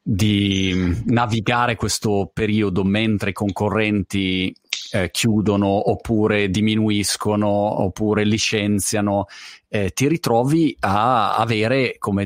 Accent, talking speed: native, 95 wpm